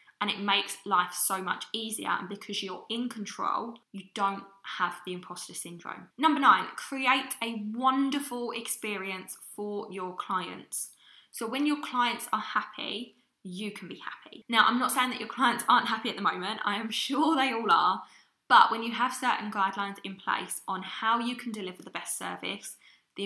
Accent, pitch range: British, 195-235 Hz